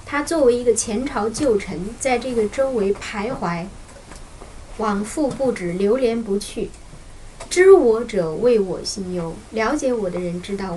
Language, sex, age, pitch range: Chinese, female, 20-39, 195-265 Hz